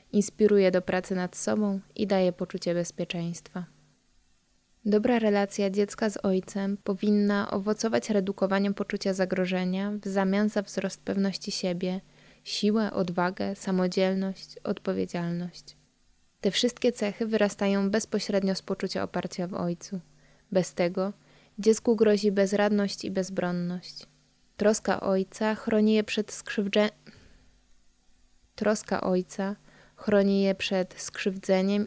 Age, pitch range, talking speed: 20-39, 185-210 Hz, 110 wpm